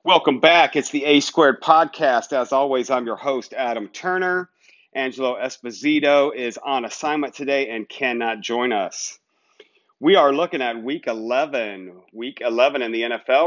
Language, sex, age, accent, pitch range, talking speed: English, male, 40-59, American, 120-175 Hz, 155 wpm